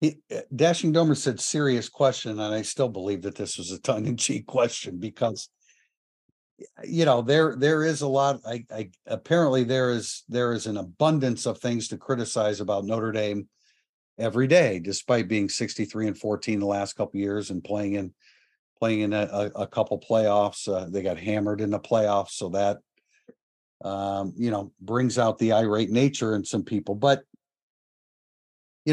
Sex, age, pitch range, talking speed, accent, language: male, 50-69, 105-135 Hz, 170 wpm, American, English